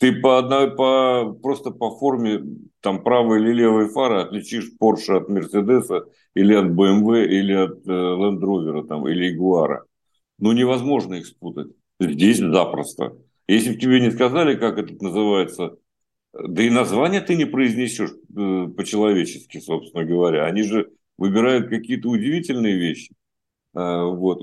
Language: Russian